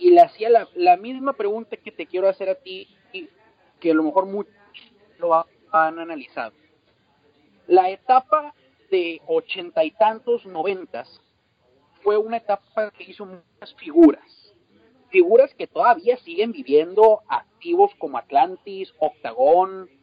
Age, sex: 40-59, male